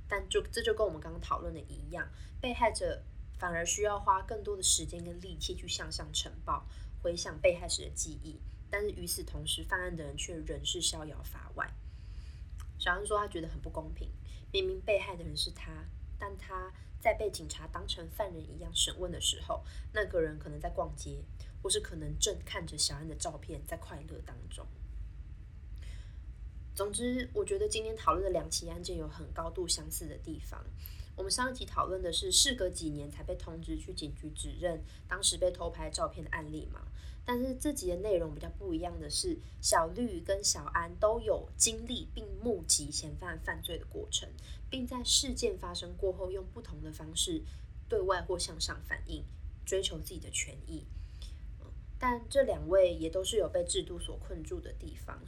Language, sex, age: Chinese, female, 20-39